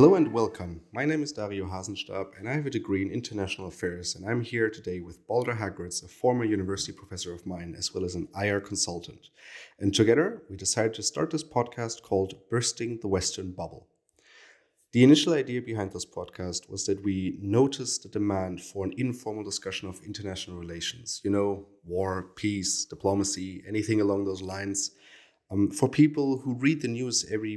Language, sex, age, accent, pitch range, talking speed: English, male, 30-49, German, 95-120 Hz, 185 wpm